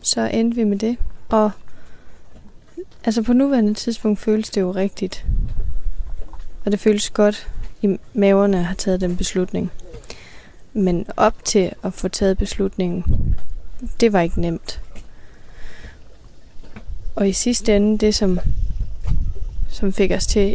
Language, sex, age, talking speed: Danish, female, 20-39, 135 wpm